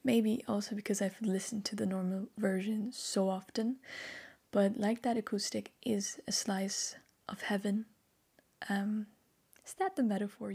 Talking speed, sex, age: 140 wpm, female, 20-39